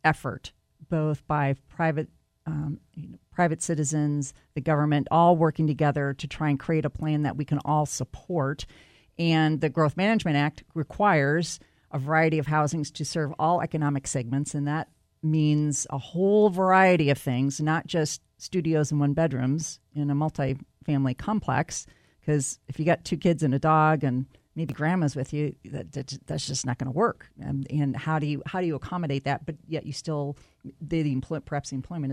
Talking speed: 185 wpm